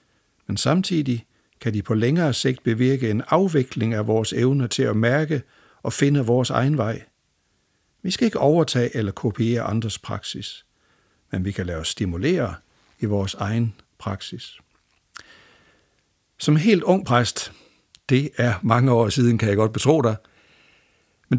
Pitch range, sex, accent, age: 110-155 Hz, male, Danish, 60-79